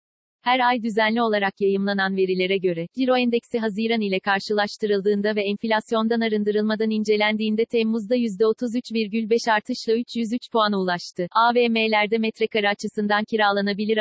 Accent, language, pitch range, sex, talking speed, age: native, Turkish, 200-230 Hz, female, 110 wpm, 40-59